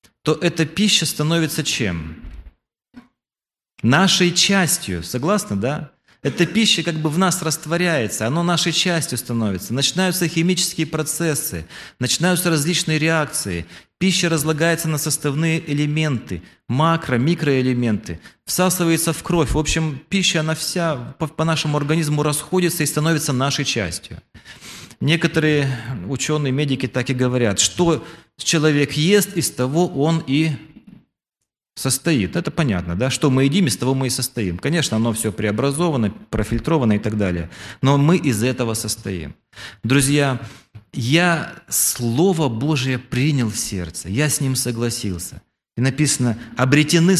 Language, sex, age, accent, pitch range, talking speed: Russian, male, 30-49, native, 120-165 Hz, 125 wpm